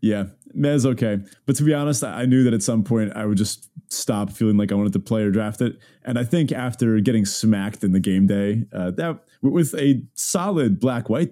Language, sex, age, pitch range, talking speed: English, male, 30-49, 100-135 Hz, 225 wpm